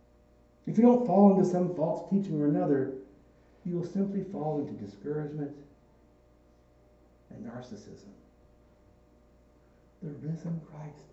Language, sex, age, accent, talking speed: English, male, 60-79, American, 115 wpm